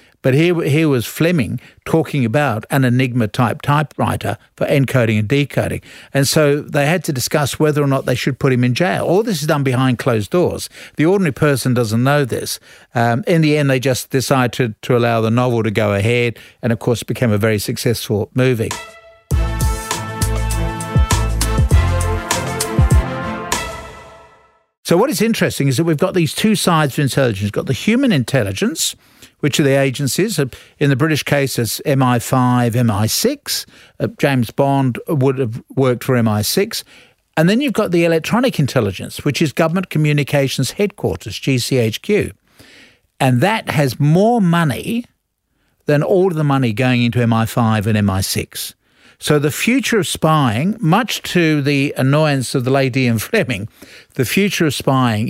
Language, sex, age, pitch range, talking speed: English, male, 60-79, 120-155 Hz, 160 wpm